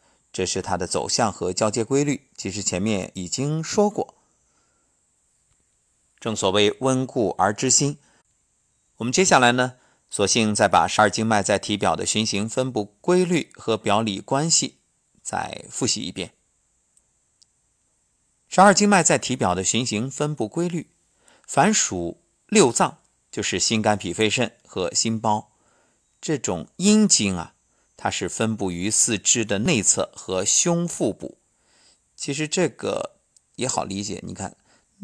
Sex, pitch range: male, 100-140 Hz